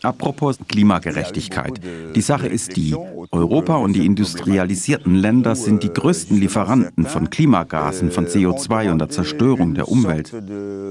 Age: 60-79